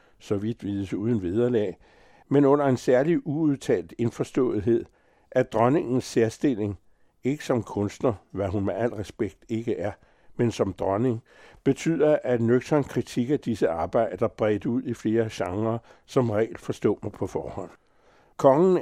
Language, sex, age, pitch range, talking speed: Danish, male, 60-79, 105-130 Hz, 145 wpm